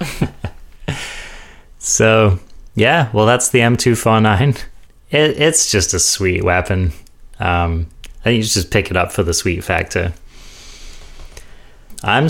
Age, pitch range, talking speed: 30-49, 90-110 Hz, 110 wpm